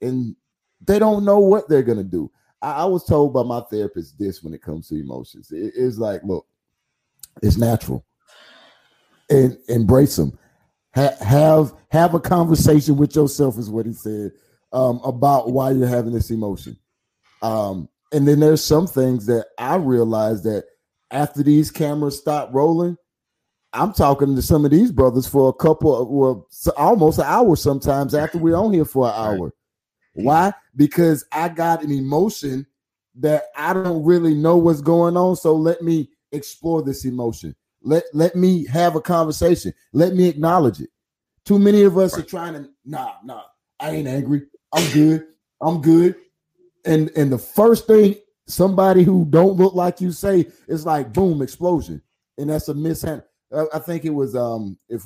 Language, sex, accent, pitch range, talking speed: English, male, American, 130-170 Hz, 175 wpm